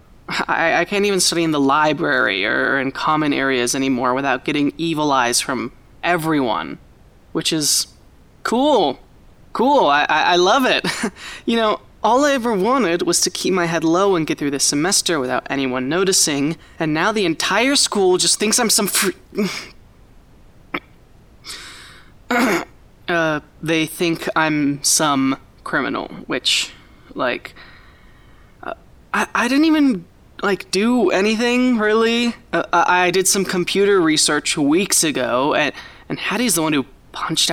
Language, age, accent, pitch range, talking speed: English, 20-39, American, 140-195 Hz, 140 wpm